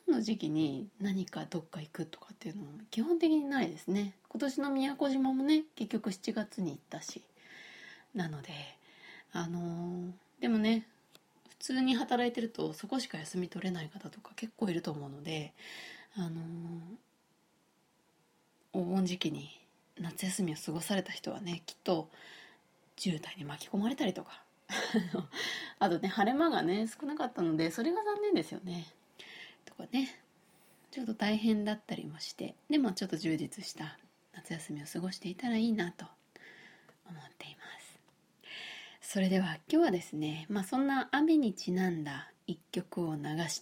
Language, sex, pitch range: Japanese, female, 170-235 Hz